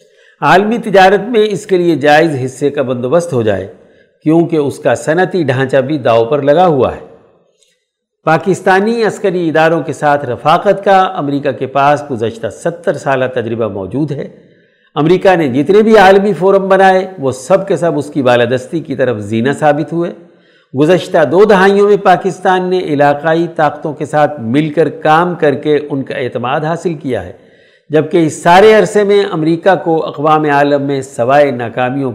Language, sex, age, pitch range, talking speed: Urdu, male, 60-79, 145-185 Hz, 170 wpm